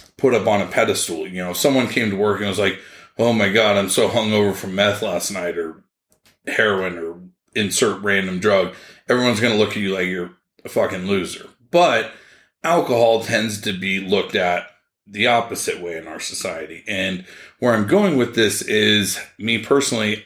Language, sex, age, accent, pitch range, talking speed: English, male, 30-49, American, 95-120 Hz, 190 wpm